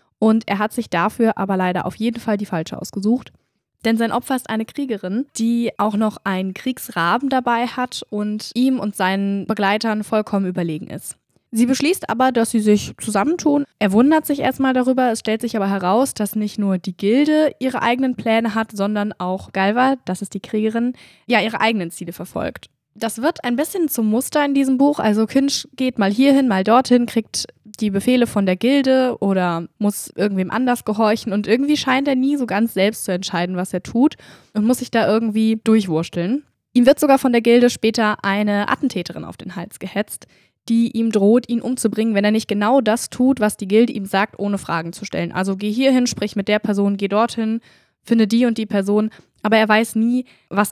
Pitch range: 200-245 Hz